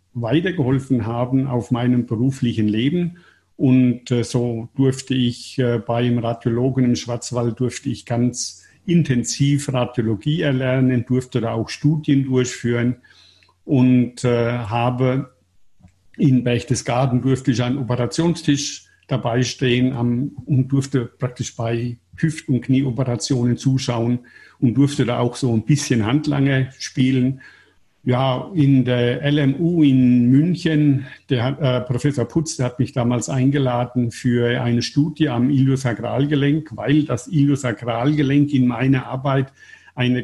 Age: 50-69